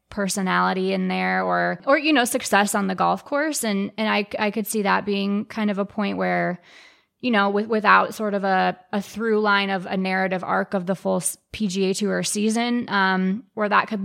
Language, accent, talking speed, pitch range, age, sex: English, American, 210 wpm, 185-215 Hz, 20-39, female